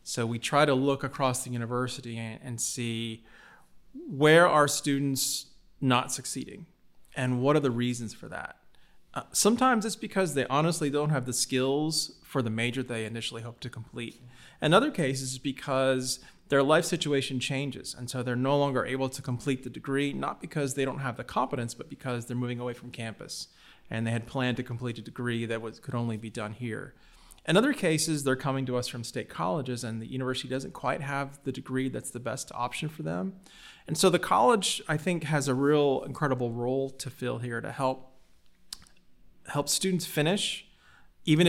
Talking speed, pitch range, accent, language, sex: 190 wpm, 120-145 Hz, American, English, male